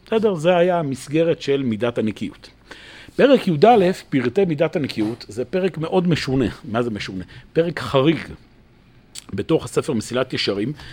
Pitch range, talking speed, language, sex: 130-185 Hz, 135 wpm, Hebrew, male